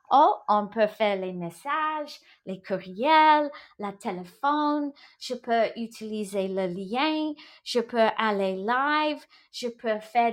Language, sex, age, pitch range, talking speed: English, female, 30-49, 210-290 Hz, 130 wpm